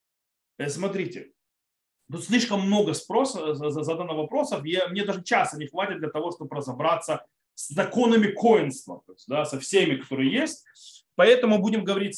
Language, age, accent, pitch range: Russian, 30-49, native, 165-230 Hz